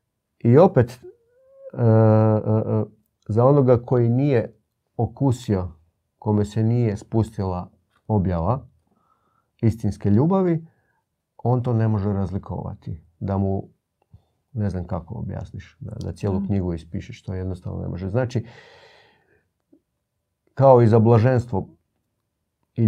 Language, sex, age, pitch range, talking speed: Croatian, male, 40-59, 100-115 Hz, 100 wpm